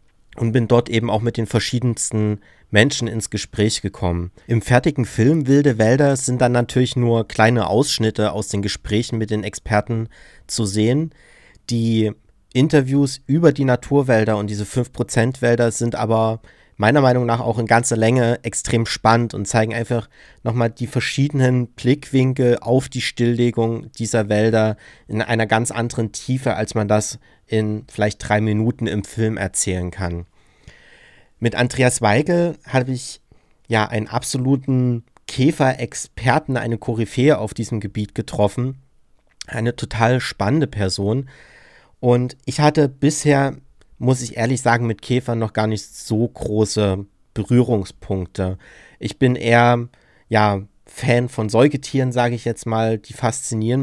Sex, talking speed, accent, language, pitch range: male, 140 wpm, German, German, 110-125 Hz